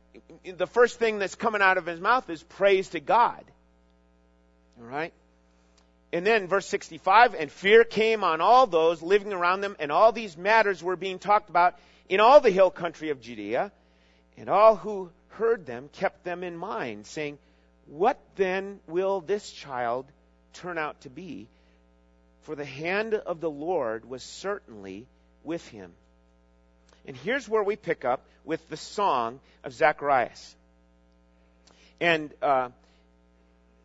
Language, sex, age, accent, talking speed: English, male, 40-59, American, 150 wpm